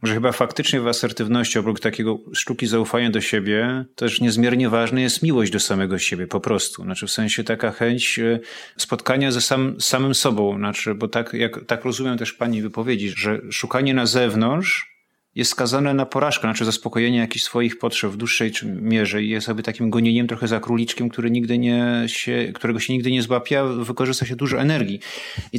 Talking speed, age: 180 wpm, 30-49